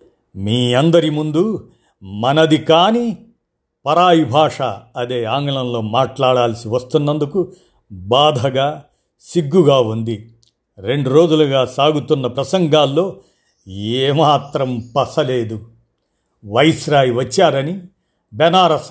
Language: Telugu